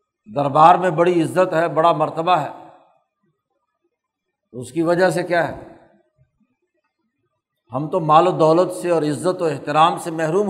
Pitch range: 155-190 Hz